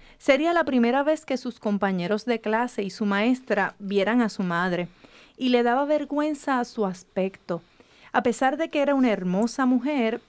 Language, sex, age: Spanish, female, 40-59